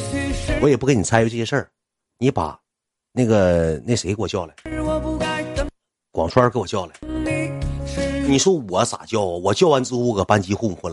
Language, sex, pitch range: Chinese, male, 85-125 Hz